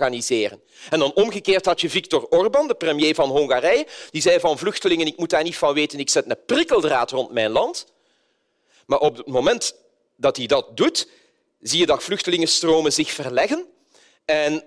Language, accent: Dutch, Belgian